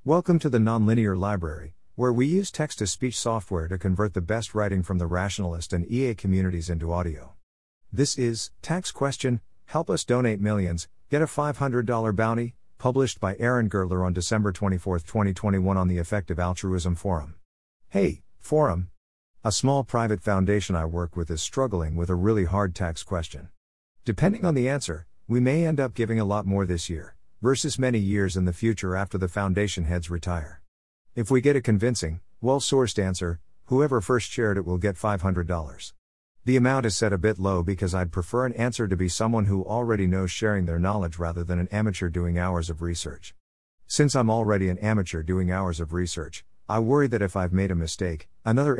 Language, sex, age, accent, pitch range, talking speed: English, male, 50-69, American, 90-115 Hz, 185 wpm